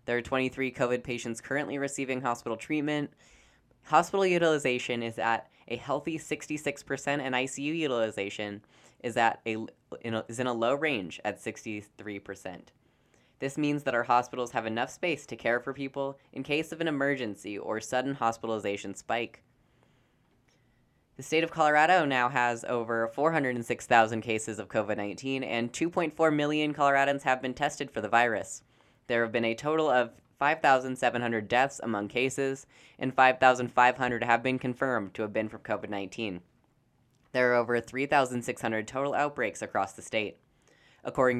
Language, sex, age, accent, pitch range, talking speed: English, female, 10-29, American, 115-140 Hz, 145 wpm